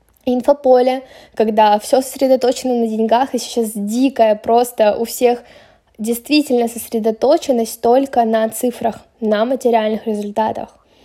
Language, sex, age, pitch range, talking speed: Russian, female, 10-29, 220-245 Hz, 110 wpm